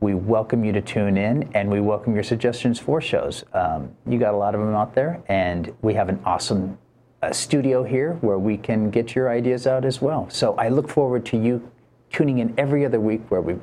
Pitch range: 110-145 Hz